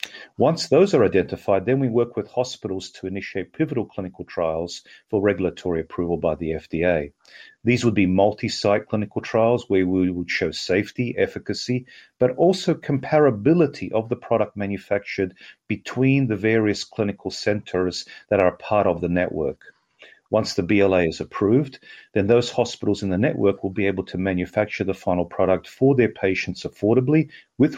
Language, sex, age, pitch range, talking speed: English, male, 40-59, 95-120 Hz, 160 wpm